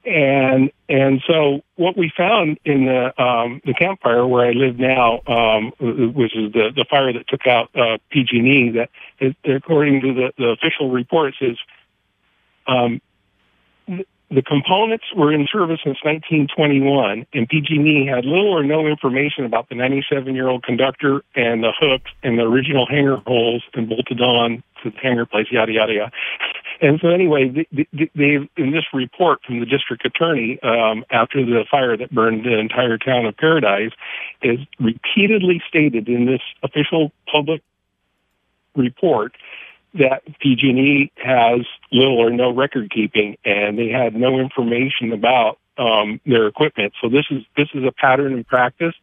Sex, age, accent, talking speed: male, 50-69, American, 165 wpm